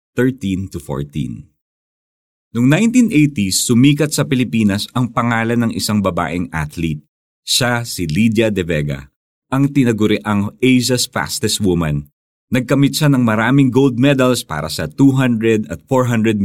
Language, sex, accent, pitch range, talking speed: Filipino, male, native, 90-130 Hz, 120 wpm